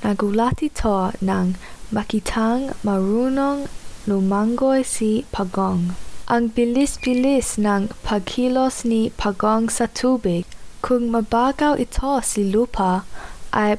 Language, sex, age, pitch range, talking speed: English, female, 10-29, 205-245 Hz, 95 wpm